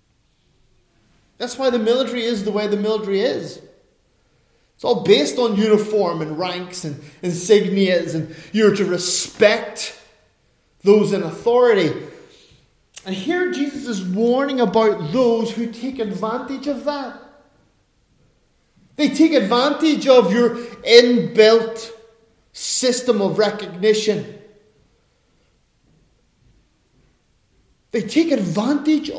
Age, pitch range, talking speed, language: 30-49, 210-280 Hz, 105 wpm, English